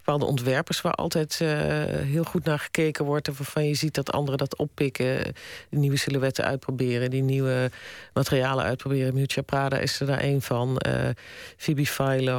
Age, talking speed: 40-59, 170 wpm